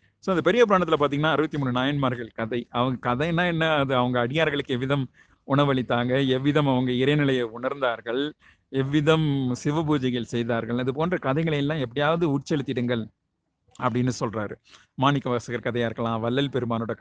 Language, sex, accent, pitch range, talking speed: Tamil, male, native, 125-155 Hz, 120 wpm